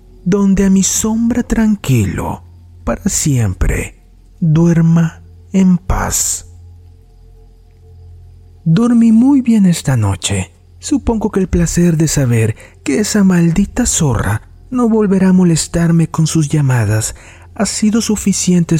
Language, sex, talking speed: Spanish, male, 110 wpm